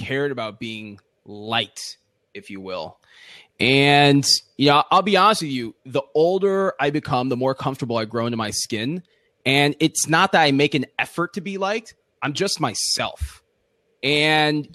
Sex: male